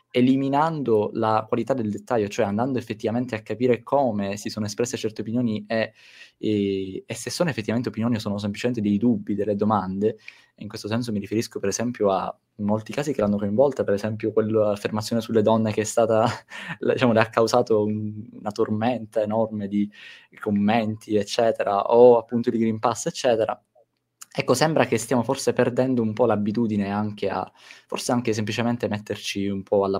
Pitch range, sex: 105-120 Hz, male